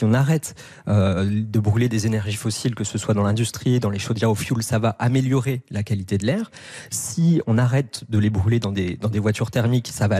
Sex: male